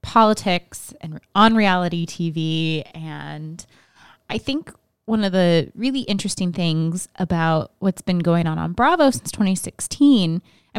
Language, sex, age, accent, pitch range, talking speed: English, female, 20-39, American, 170-225 Hz, 130 wpm